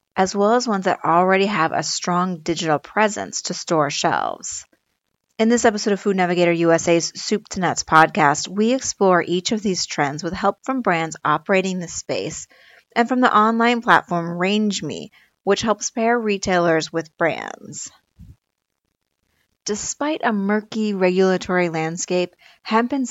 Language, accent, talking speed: English, American, 150 wpm